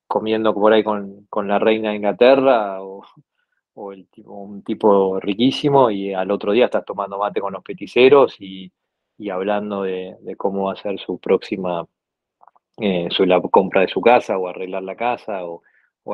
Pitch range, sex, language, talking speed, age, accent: 100-115 Hz, male, Spanish, 175 wpm, 20-39, Argentinian